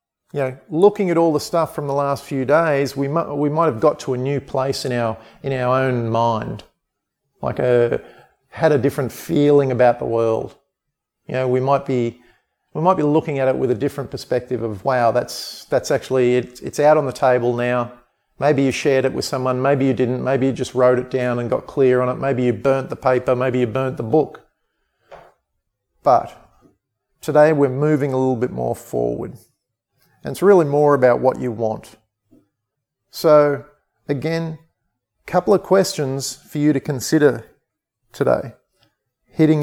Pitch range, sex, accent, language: 125-150 Hz, male, Australian, English